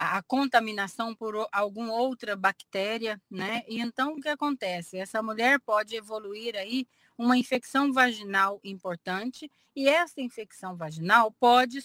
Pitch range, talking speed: 200-260 Hz, 130 wpm